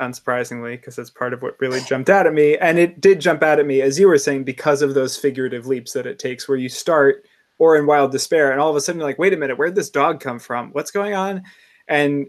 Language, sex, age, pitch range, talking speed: English, male, 20-39, 130-150 Hz, 275 wpm